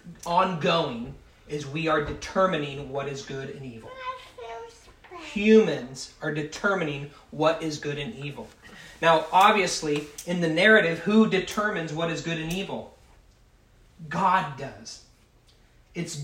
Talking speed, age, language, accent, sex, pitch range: 120 wpm, 30-49, English, American, male, 155-205 Hz